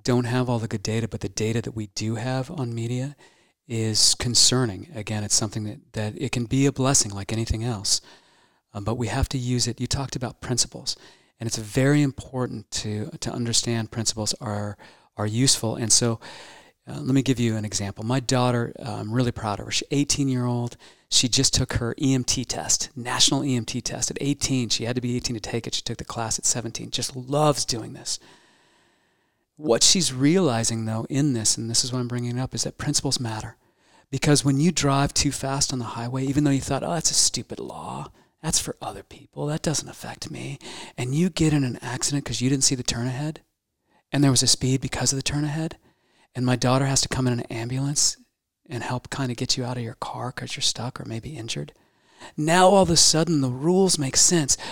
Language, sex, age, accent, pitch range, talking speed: English, male, 40-59, American, 115-140 Hz, 220 wpm